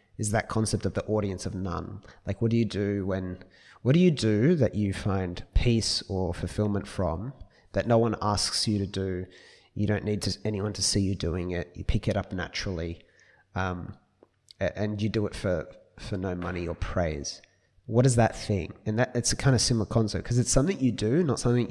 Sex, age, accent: male, 30-49, Australian